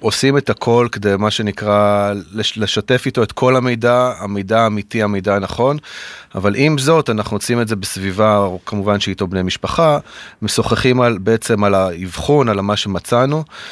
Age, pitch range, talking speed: 30-49, 100-120 Hz, 155 wpm